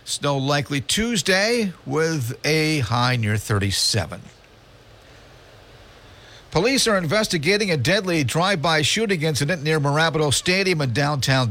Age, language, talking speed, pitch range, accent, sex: 50-69, English, 110 wpm, 105-140 Hz, American, male